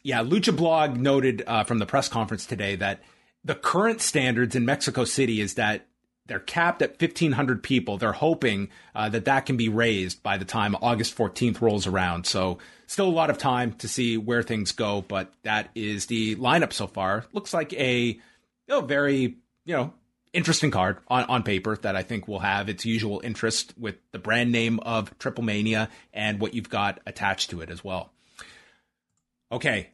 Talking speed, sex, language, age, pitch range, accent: 190 wpm, male, English, 30-49, 105-140 Hz, American